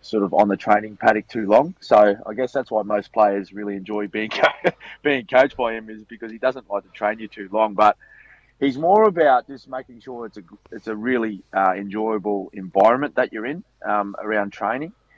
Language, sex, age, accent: English, male, 30-49, Australian